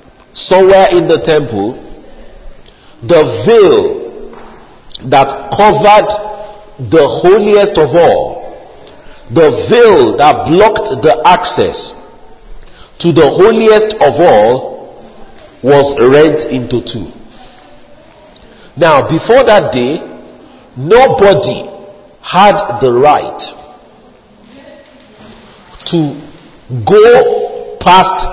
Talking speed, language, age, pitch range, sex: 80 wpm, English, 50-69, 160-265 Hz, male